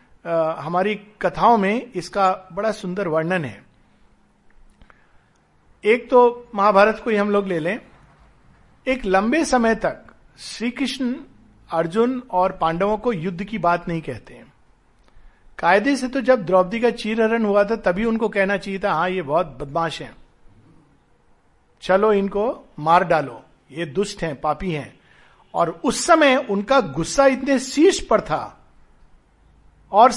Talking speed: 140 wpm